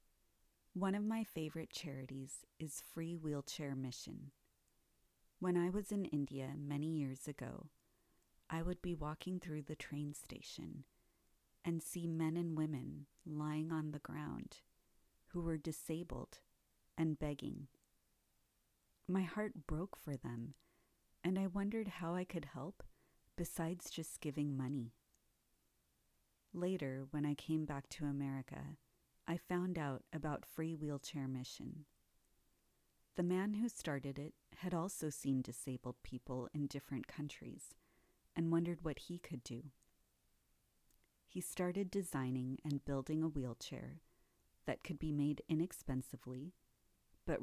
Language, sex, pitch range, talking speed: English, female, 135-170 Hz, 130 wpm